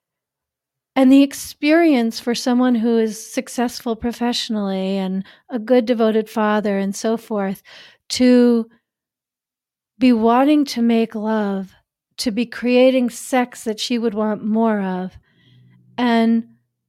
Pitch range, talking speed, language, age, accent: 210-250 Hz, 120 wpm, English, 40-59, American